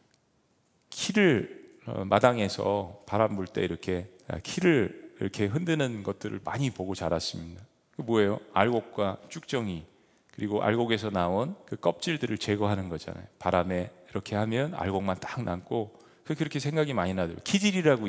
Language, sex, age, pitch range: Korean, male, 40-59, 95-140 Hz